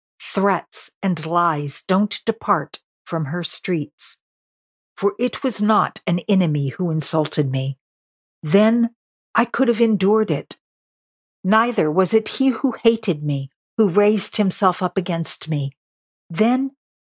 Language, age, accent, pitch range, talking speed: English, 50-69, American, 155-215 Hz, 130 wpm